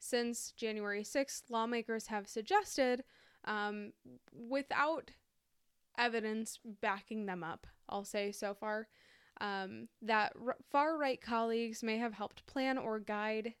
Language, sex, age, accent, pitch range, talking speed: English, female, 10-29, American, 205-240 Hz, 120 wpm